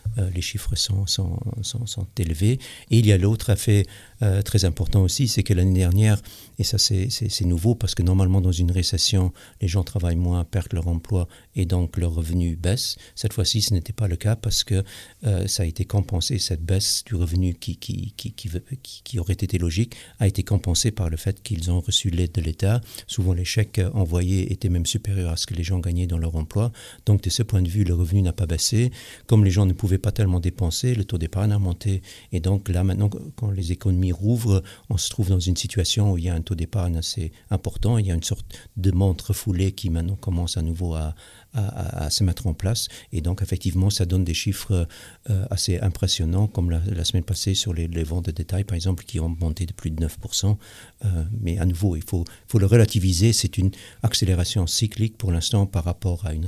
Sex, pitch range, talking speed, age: male, 90-105 Hz, 230 wpm, 60-79